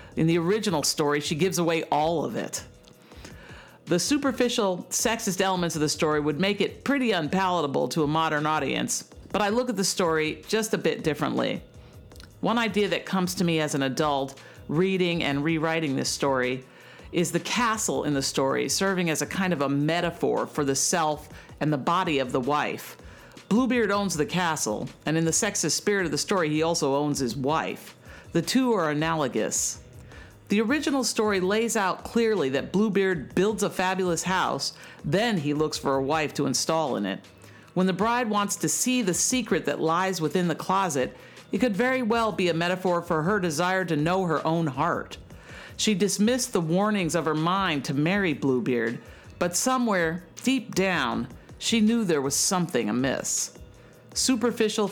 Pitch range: 150-200 Hz